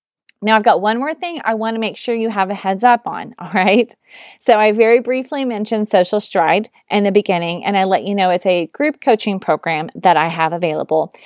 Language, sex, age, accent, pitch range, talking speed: English, female, 30-49, American, 190-240 Hz, 230 wpm